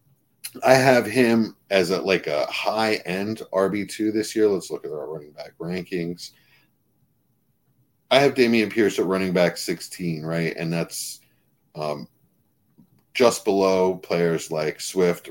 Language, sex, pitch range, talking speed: English, male, 90-125 Hz, 135 wpm